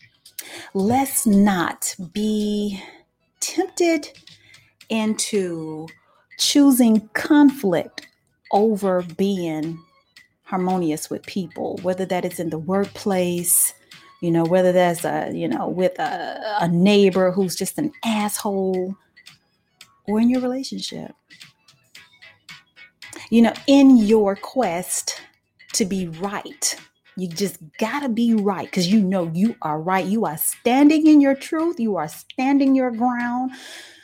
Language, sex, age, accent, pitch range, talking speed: English, female, 30-49, American, 185-250 Hz, 120 wpm